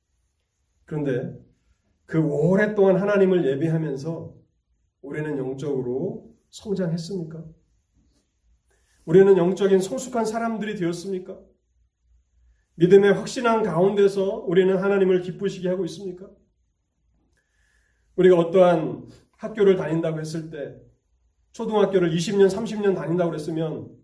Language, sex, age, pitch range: Korean, male, 30-49, 125-185 Hz